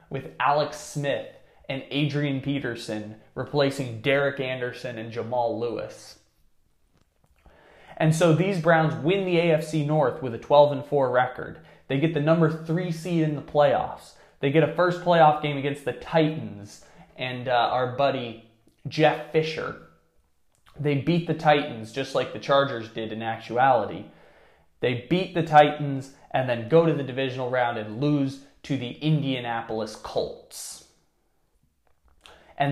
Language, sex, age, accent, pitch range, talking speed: English, male, 20-39, American, 120-155 Hz, 140 wpm